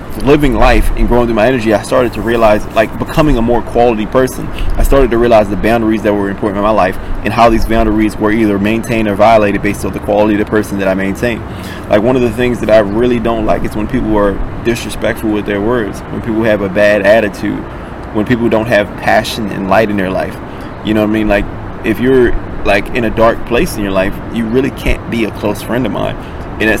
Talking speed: 245 wpm